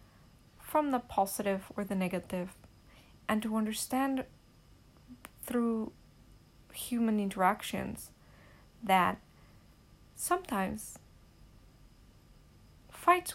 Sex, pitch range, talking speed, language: female, 190-235 Hz, 65 wpm, English